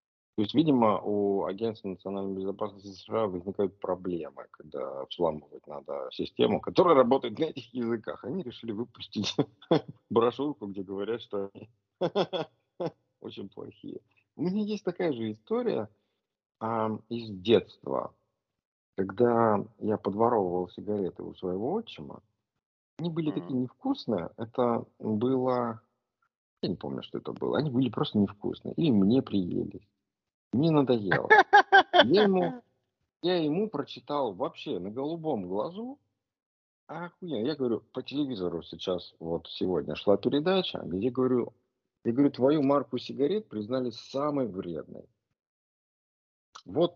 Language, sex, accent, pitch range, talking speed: Russian, male, native, 100-150 Hz, 120 wpm